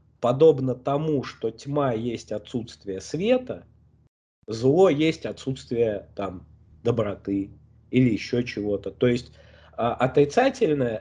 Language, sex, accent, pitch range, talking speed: Russian, male, native, 110-150 Hz, 100 wpm